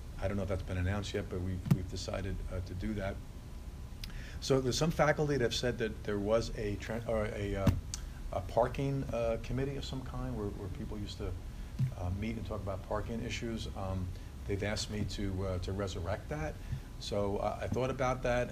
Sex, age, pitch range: male, 40-59, 95-110 Hz